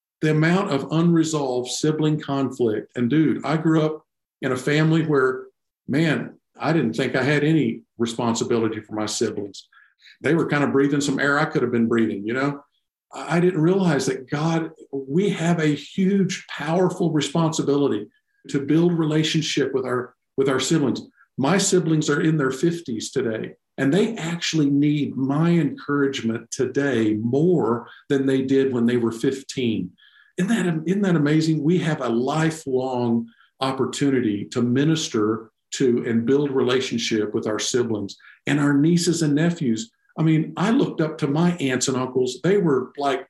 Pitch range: 130-170 Hz